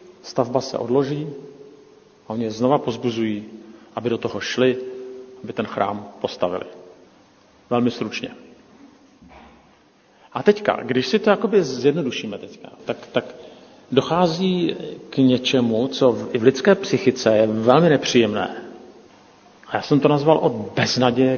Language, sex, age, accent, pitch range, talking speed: Czech, male, 50-69, native, 115-145 Hz, 130 wpm